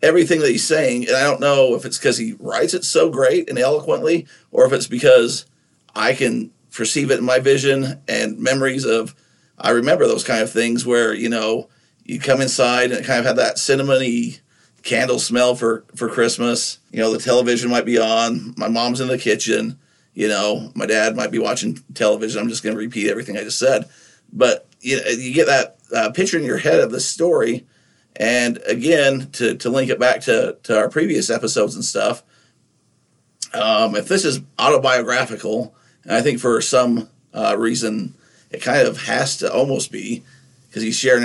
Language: English